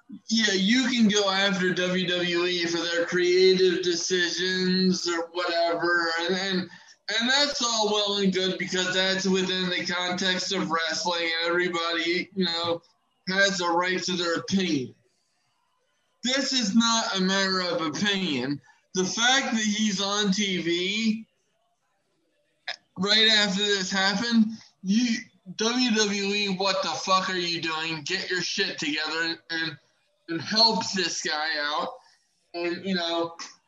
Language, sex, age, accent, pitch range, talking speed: English, male, 20-39, American, 175-205 Hz, 130 wpm